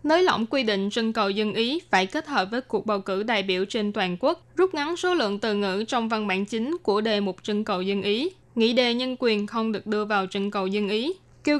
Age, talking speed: 10-29, 260 wpm